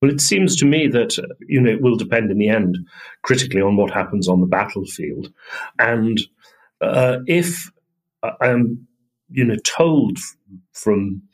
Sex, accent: male, British